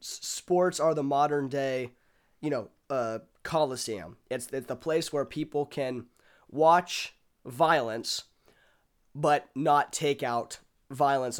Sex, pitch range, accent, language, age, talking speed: male, 120-145 Hz, American, English, 20-39, 120 wpm